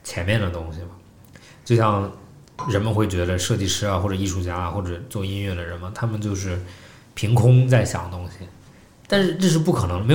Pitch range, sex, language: 95-125 Hz, male, Chinese